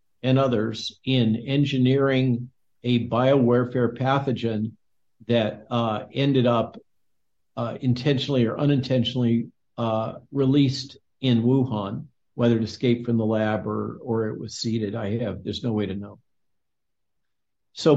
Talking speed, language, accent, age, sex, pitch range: 125 wpm, English, American, 50-69, male, 115-135 Hz